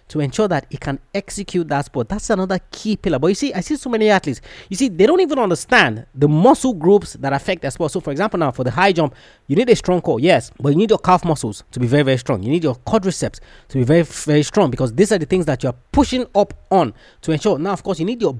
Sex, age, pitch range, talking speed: male, 30-49, 145-205 Hz, 275 wpm